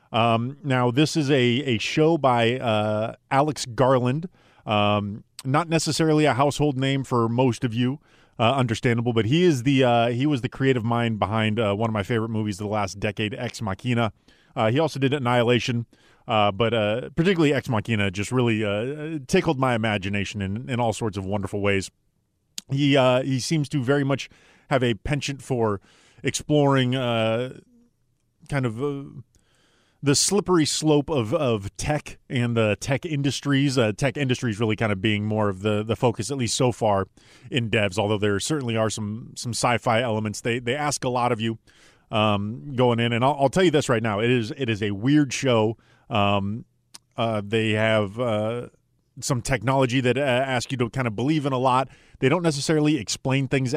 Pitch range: 110-140 Hz